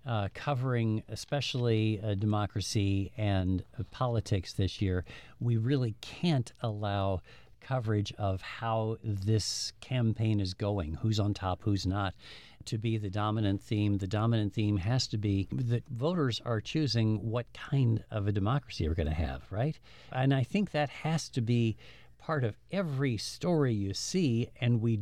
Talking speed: 160 wpm